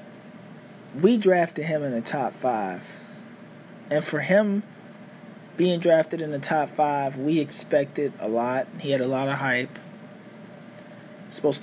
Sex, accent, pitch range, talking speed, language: male, American, 150-200 Hz, 140 wpm, English